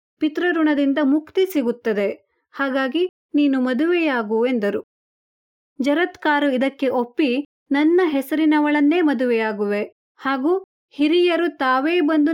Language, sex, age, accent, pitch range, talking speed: Kannada, female, 30-49, native, 250-305 Hz, 85 wpm